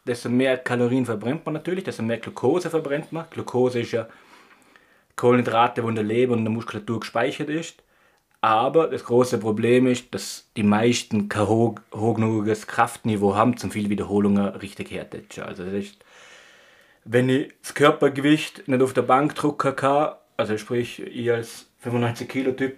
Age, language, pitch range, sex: 30-49, German, 105-125 Hz, male